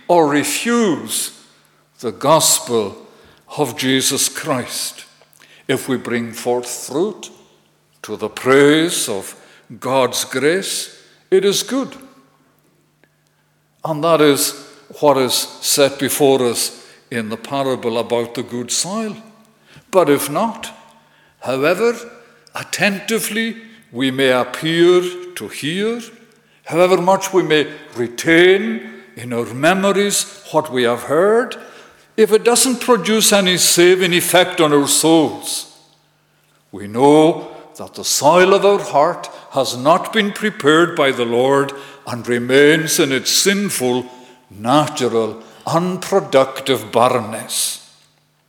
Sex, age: male, 60-79